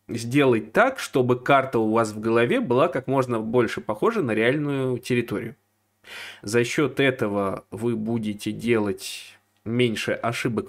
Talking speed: 135 wpm